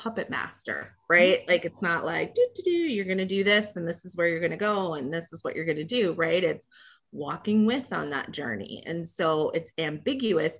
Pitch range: 160-210 Hz